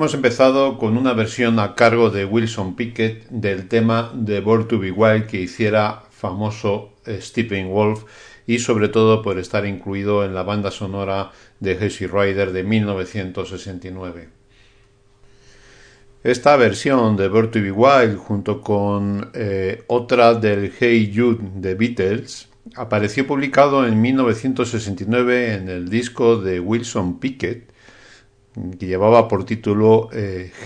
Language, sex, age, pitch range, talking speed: Spanish, male, 50-69, 95-115 Hz, 130 wpm